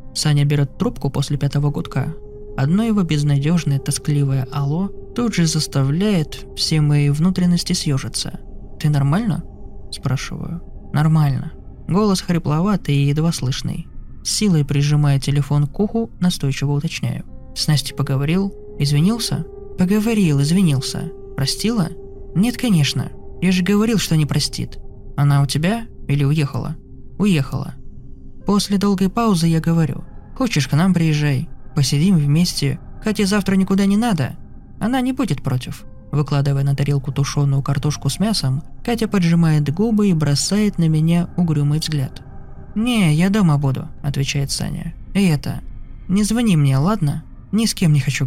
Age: 20-39